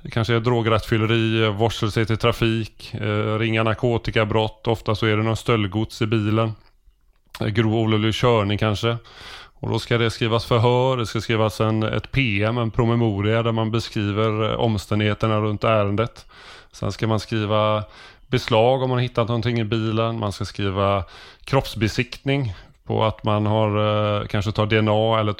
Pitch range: 100-115 Hz